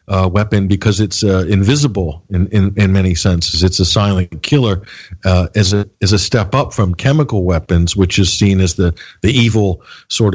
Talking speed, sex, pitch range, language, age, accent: 190 wpm, male, 95-110 Hz, English, 50-69, American